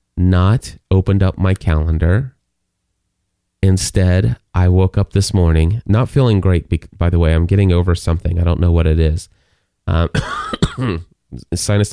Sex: male